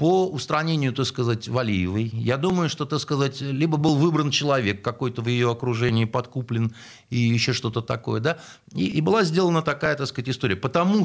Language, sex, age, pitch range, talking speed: Russian, male, 50-69, 120-165 Hz, 180 wpm